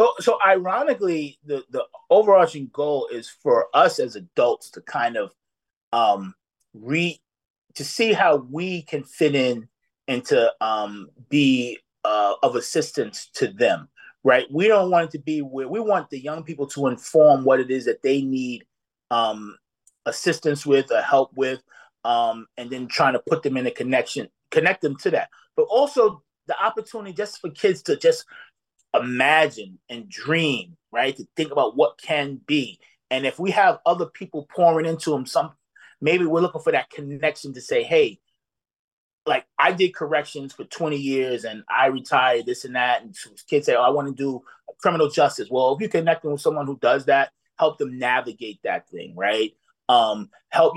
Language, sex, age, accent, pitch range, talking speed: English, male, 30-49, American, 130-170 Hz, 180 wpm